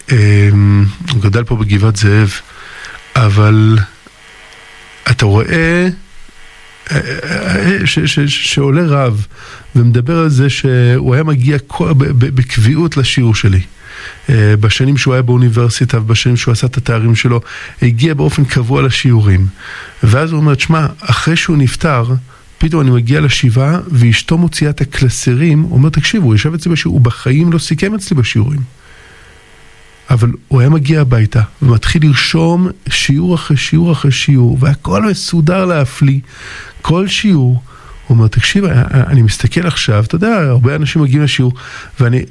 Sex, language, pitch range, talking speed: male, Hebrew, 120-155 Hz, 135 wpm